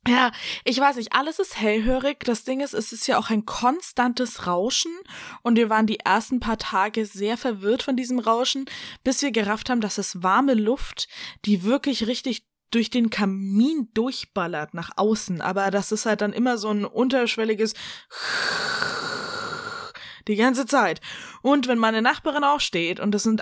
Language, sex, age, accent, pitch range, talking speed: German, female, 10-29, German, 215-270 Hz, 170 wpm